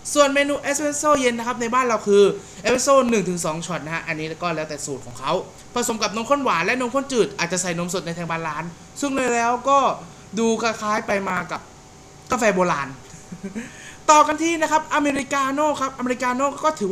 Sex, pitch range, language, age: male, 180-255 Hz, Thai, 20-39